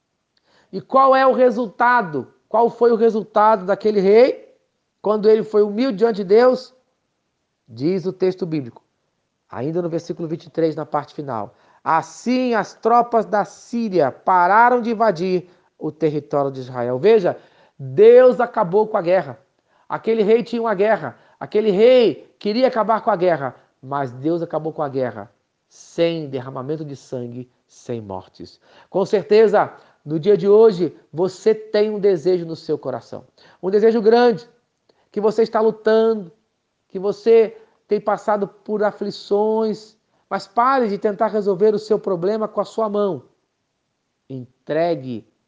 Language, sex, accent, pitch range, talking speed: Portuguese, male, Brazilian, 130-220 Hz, 145 wpm